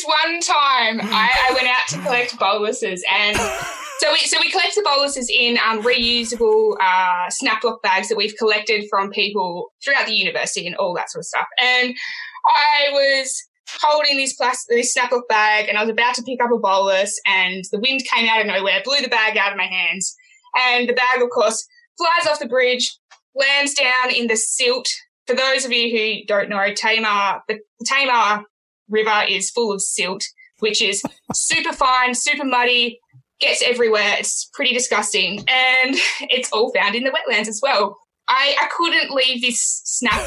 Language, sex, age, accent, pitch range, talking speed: English, female, 20-39, Australian, 220-285 Hz, 190 wpm